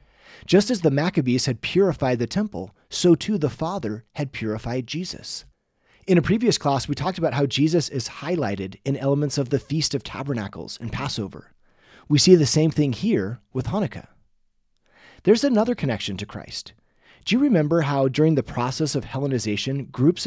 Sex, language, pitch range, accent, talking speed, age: male, English, 125-165 Hz, American, 170 wpm, 30-49